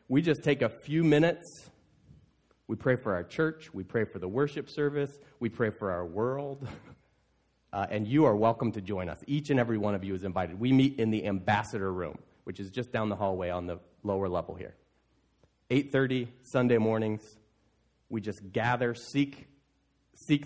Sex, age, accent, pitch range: male, 30-49, American, 110-155 Hz